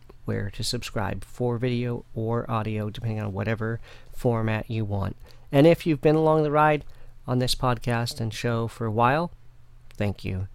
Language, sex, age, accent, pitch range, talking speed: English, male, 40-59, American, 115-150 Hz, 165 wpm